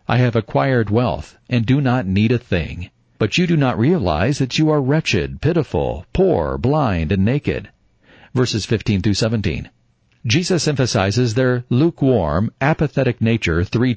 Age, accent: 50-69, American